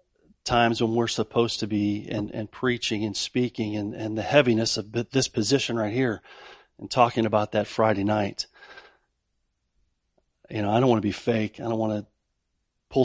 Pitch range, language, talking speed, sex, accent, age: 105-125 Hz, English, 180 wpm, male, American, 40-59